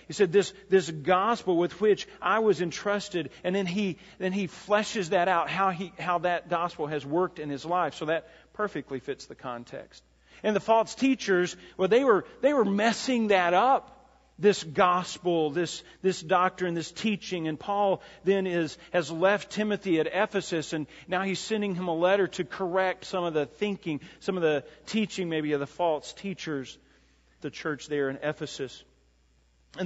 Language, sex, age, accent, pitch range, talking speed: English, male, 40-59, American, 150-195 Hz, 180 wpm